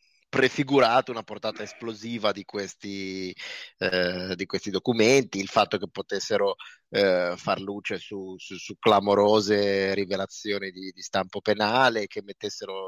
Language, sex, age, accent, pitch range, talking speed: Italian, male, 30-49, native, 100-120 Hz, 120 wpm